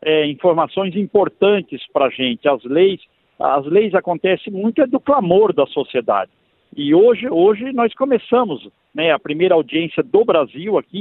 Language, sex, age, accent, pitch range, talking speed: Portuguese, male, 50-69, Brazilian, 155-230 Hz, 155 wpm